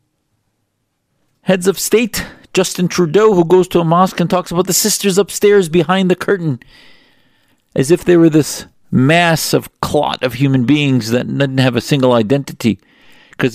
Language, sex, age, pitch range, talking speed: English, male, 50-69, 115-145 Hz, 165 wpm